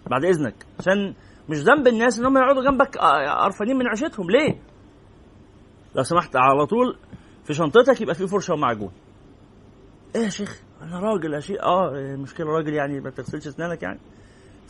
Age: 30-49